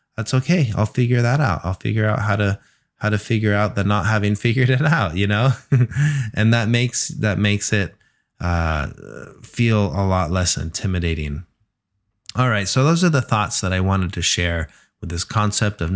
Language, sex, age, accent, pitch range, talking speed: English, male, 20-39, American, 90-110 Hz, 190 wpm